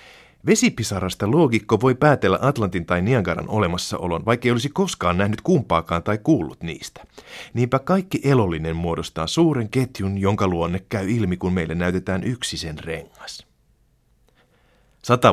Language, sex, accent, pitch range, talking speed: Finnish, male, native, 85-115 Hz, 130 wpm